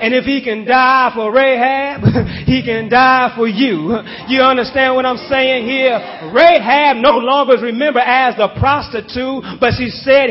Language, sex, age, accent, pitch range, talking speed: English, male, 30-49, American, 240-270 Hz, 170 wpm